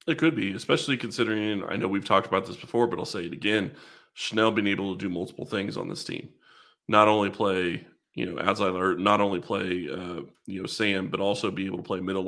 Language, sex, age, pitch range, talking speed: English, male, 30-49, 95-105 Hz, 240 wpm